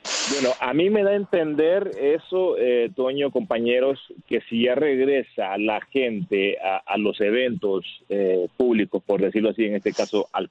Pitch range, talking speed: 100-120 Hz, 170 wpm